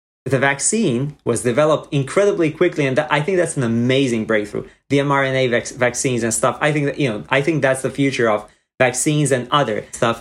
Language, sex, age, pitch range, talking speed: English, male, 30-49, 115-160 Hz, 195 wpm